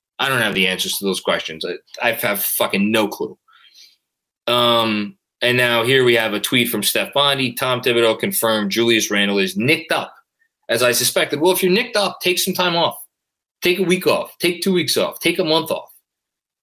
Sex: male